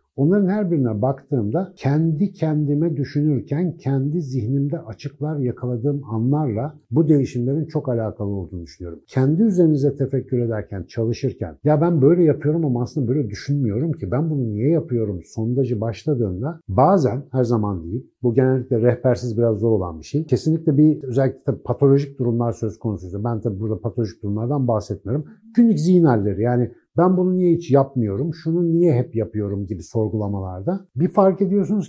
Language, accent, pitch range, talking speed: Turkish, native, 115-155 Hz, 150 wpm